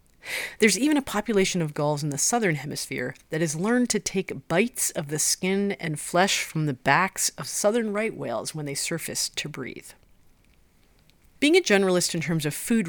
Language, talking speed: English, 185 wpm